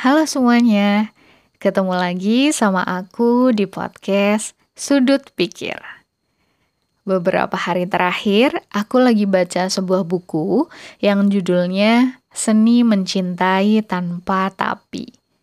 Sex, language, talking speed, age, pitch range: female, Indonesian, 95 wpm, 20-39, 180-220 Hz